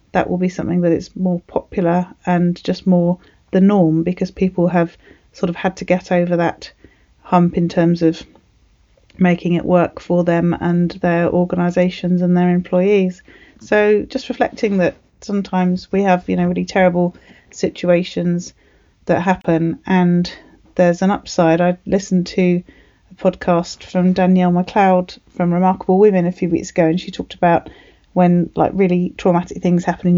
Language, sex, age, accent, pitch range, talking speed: English, female, 30-49, British, 175-190 Hz, 165 wpm